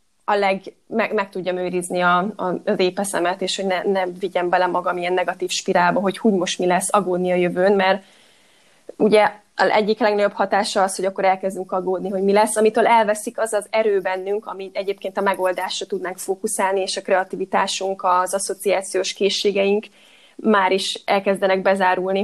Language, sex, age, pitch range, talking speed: Hungarian, female, 20-39, 185-210 Hz, 165 wpm